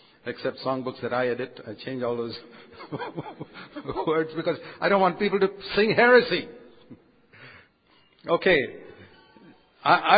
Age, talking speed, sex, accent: 60-79, 120 wpm, male, Indian